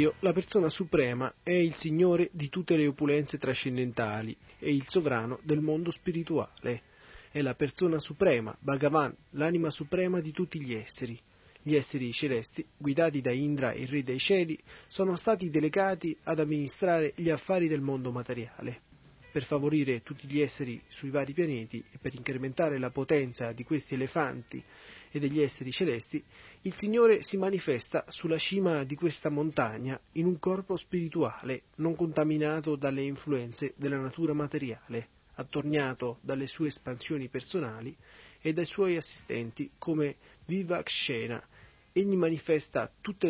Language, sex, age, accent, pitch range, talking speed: Italian, male, 30-49, native, 130-165 Hz, 145 wpm